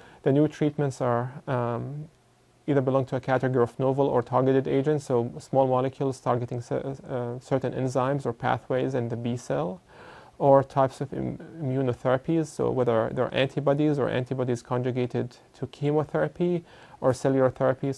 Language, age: English, 30-49